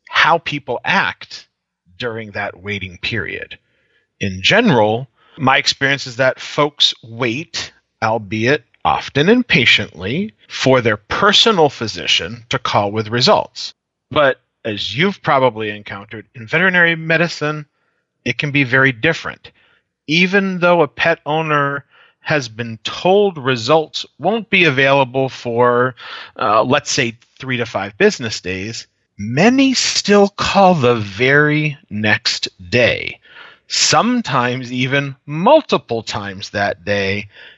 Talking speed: 115 wpm